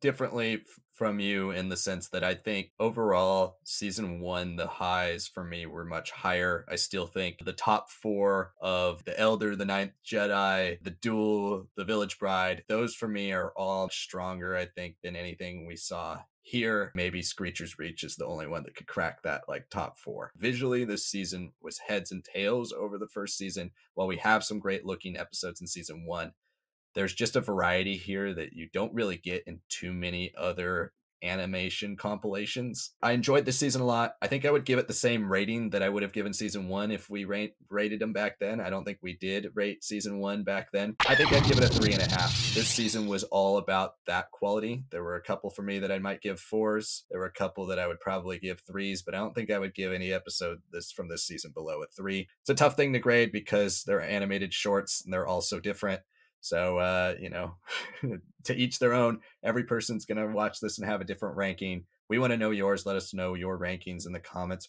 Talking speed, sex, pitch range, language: 220 wpm, male, 95-110 Hz, English